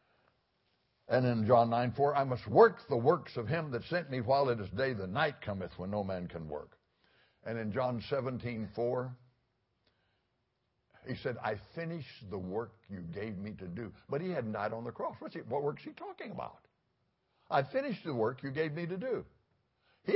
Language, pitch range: English, 105-165 Hz